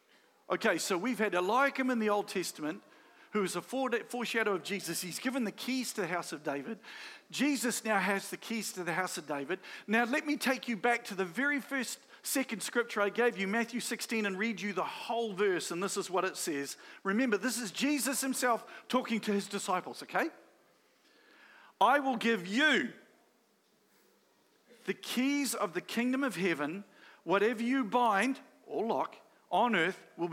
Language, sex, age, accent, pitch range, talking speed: English, male, 50-69, Australian, 195-265 Hz, 180 wpm